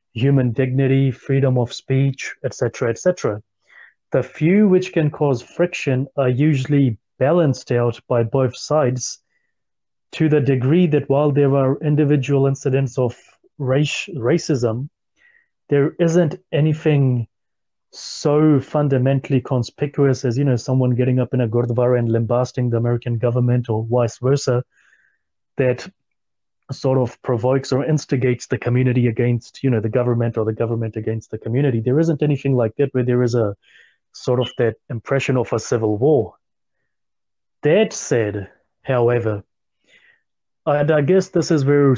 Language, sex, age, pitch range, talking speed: English, male, 30-49, 120-140 Hz, 145 wpm